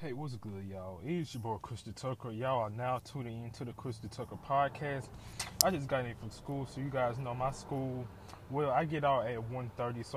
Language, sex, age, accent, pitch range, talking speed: English, male, 20-39, American, 120-150 Hz, 225 wpm